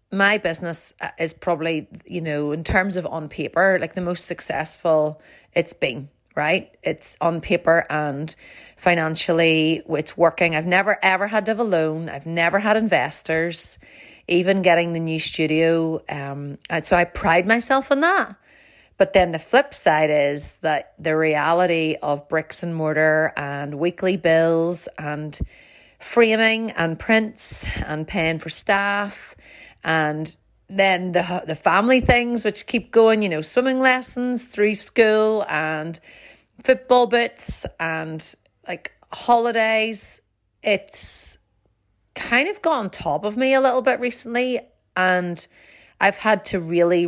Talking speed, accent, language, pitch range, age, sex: 140 wpm, Irish, English, 160-205 Hz, 30-49, female